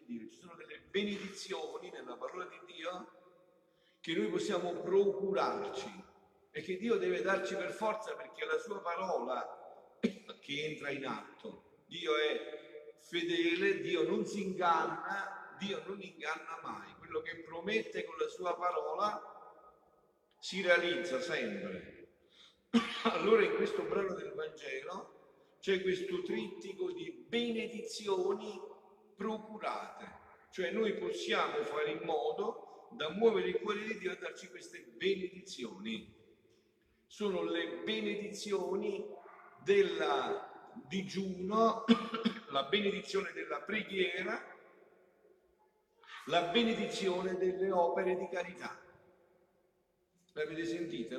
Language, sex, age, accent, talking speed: Italian, male, 50-69, native, 115 wpm